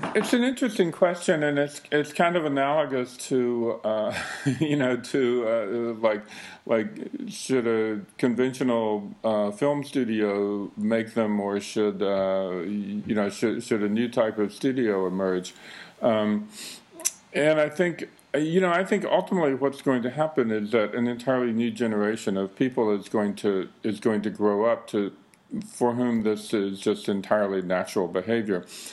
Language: English